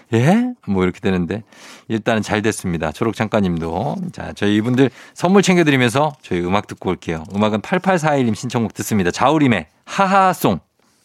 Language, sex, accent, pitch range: Korean, male, native, 105-145 Hz